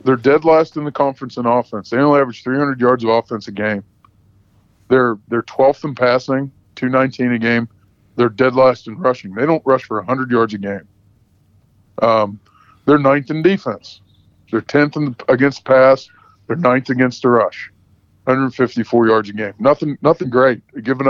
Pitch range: 105-135 Hz